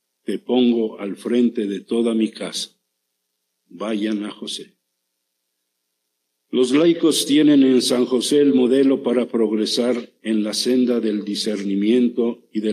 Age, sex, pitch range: 50-69, male, 100-120 Hz